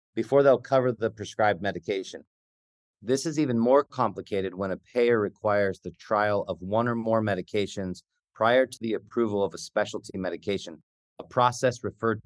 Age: 40-59